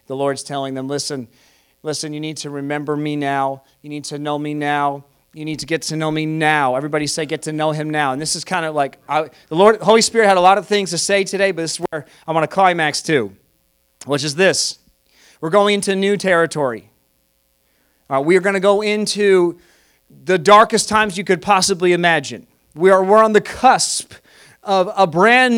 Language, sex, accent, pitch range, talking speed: English, male, American, 145-210 Hz, 215 wpm